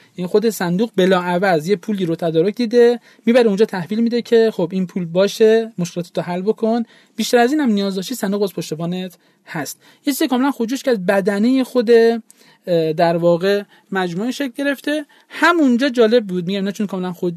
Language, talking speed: Persian, 185 wpm